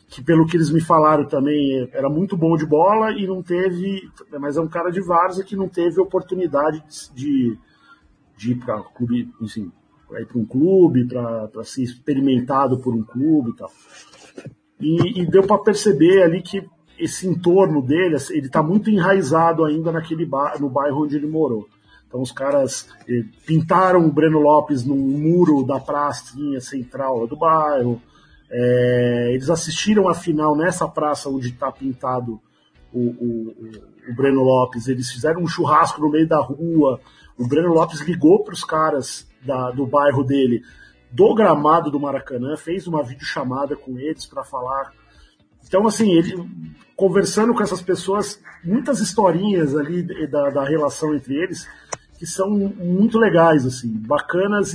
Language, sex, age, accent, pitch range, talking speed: Portuguese, male, 40-59, Brazilian, 135-175 Hz, 150 wpm